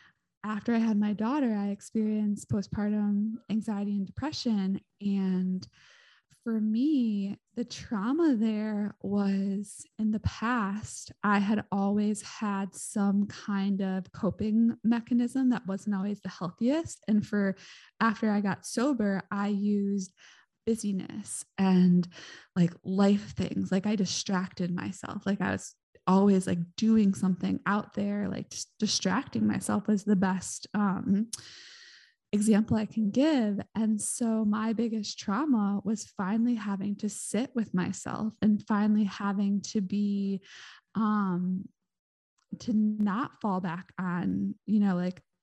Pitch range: 195-220 Hz